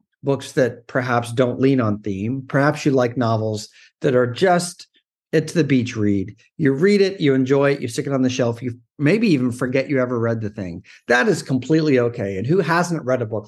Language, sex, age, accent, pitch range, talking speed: English, male, 50-69, American, 115-150 Hz, 220 wpm